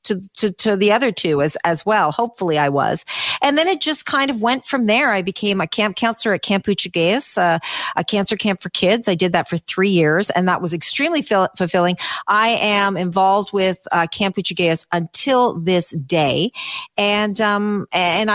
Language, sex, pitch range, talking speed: English, female, 160-210 Hz, 195 wpm